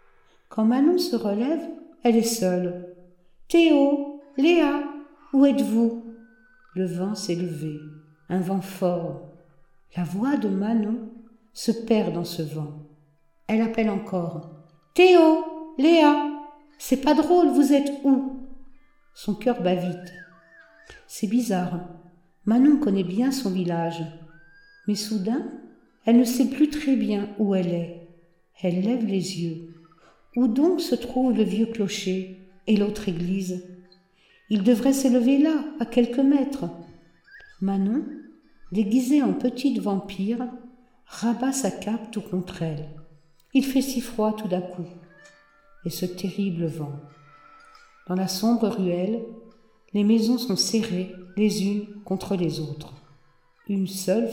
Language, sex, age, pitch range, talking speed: French, female, 60-79, 180-255 Hz, 130 wpm